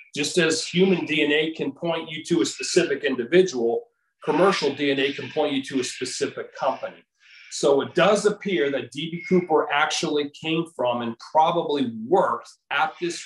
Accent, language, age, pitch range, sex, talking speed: American, English, 40-59, 130-165 Hz, male, 160 wpm